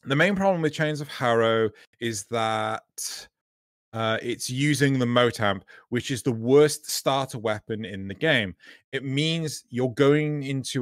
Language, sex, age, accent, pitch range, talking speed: English, male, 30-49, British, 105-135 Hz, 155 wpm